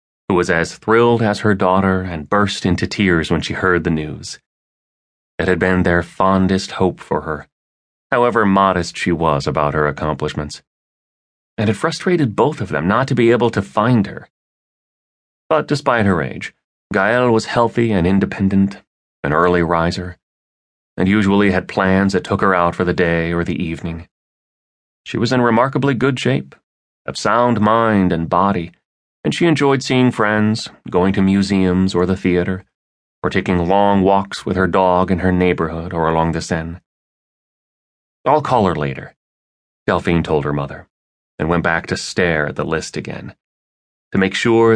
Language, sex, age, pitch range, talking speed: English, male, 30-49, 85-105 Hz, 170 wpm